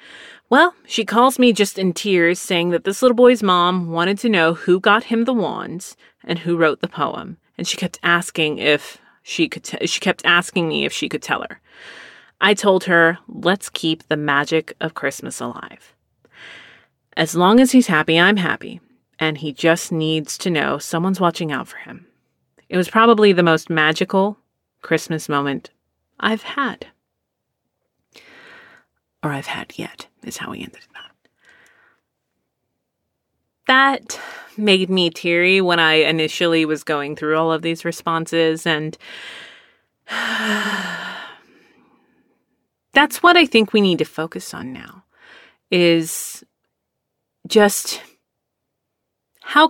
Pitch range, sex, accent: 160-210 Hz, female, American